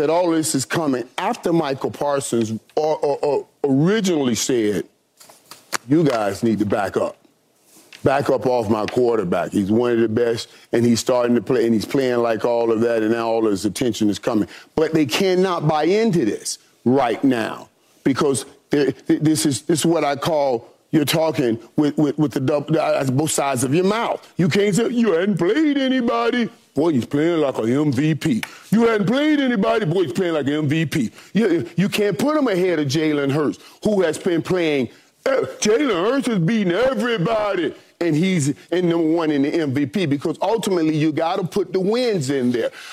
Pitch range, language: 140-200 Hz, English